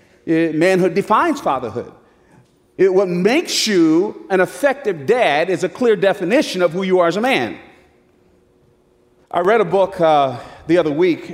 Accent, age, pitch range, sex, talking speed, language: American, 40-59, 135-180 Hz, male, 150 wpm, English